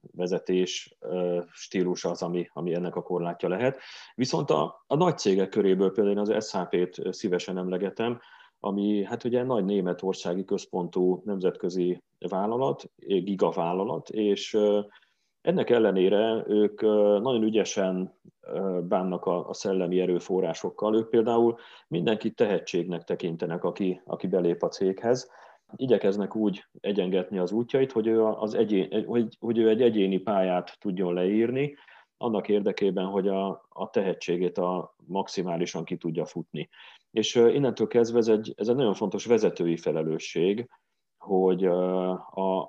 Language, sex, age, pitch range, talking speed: Hungarian, male, 30-49, 90-110 Hz, 130 wpm